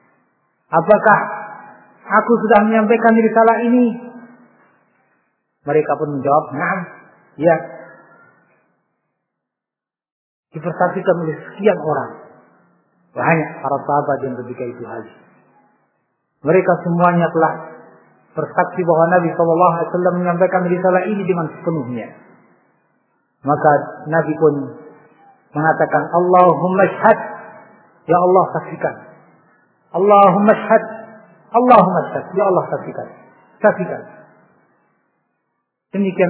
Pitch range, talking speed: 155-200 Hz, 90 wpm